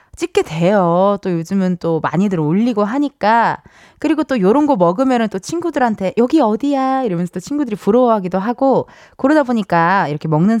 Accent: native